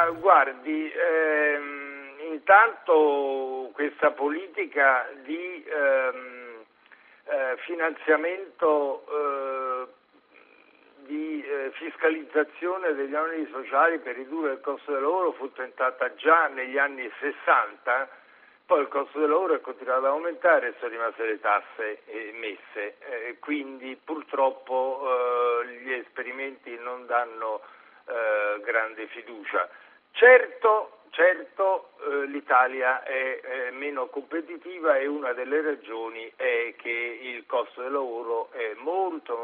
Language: Italian